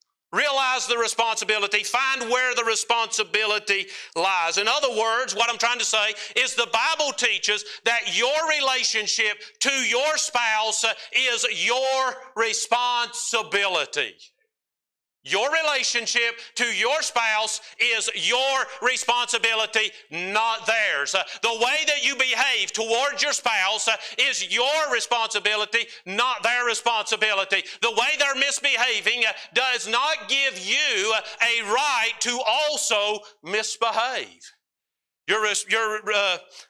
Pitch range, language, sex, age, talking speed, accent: 210-245 Hz, English, male, 50-69, 115 wpm, American